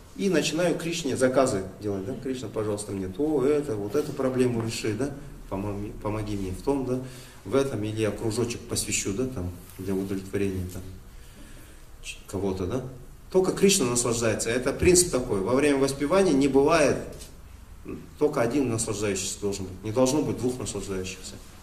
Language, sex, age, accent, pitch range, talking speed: Russian, male, 30-49, native, 95-135 Hz, 155 wpm